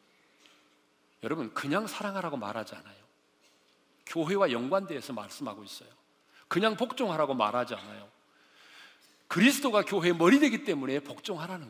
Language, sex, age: Korean, male, 40-59